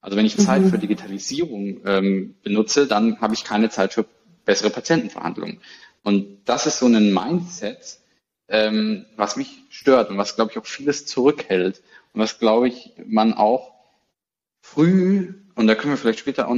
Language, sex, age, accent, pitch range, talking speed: German, male, 20-39, German, 110-170 Hz, 170 wpm